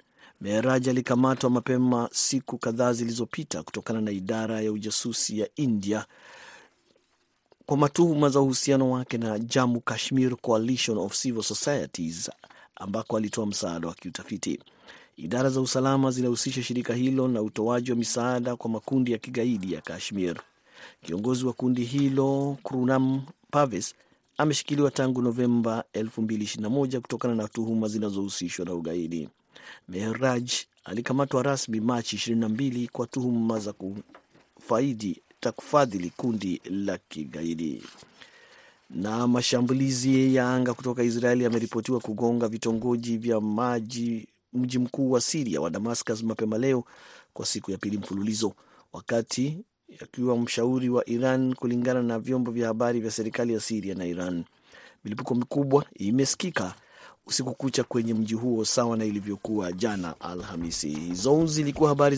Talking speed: 125 wpm